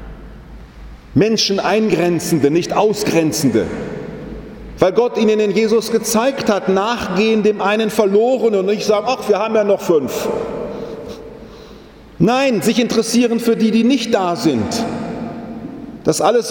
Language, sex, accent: German, male, German